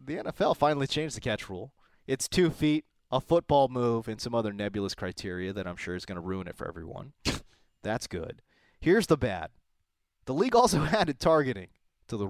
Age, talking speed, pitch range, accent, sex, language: 30-49, 195 wpm, 105-175 Hz, American, male, English